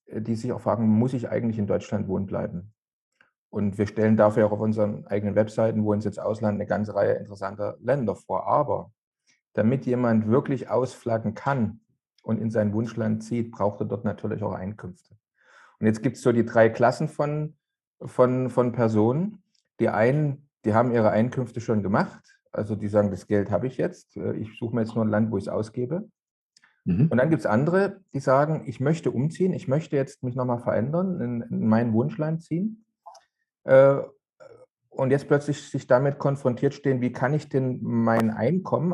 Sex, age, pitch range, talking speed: male, 40-59, 110-140 Hz, 185 wpm